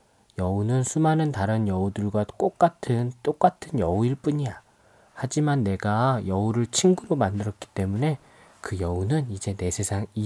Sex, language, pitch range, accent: male, Korean, 100-135 Hz, native